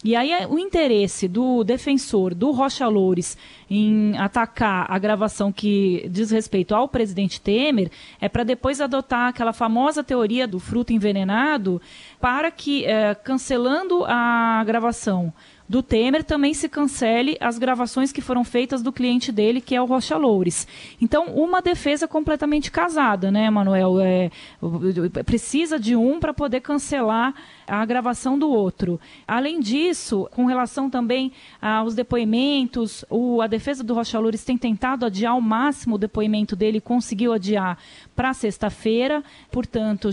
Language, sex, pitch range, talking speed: Portuguese, female, 210-255 Hz, 140 wpm